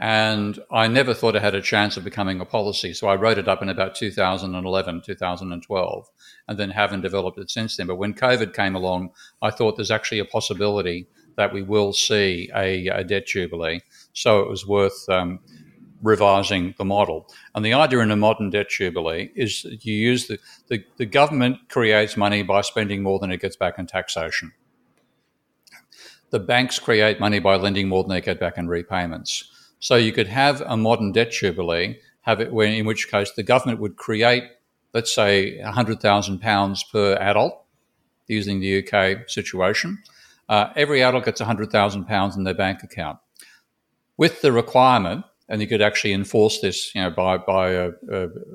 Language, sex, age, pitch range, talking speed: English, male, 50-69, 95-110 Hz, 185 wpm